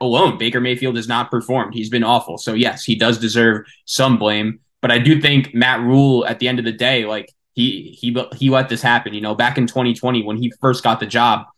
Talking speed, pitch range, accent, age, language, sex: 240 wpm, 120-175 Hz, American, 20-39, English, male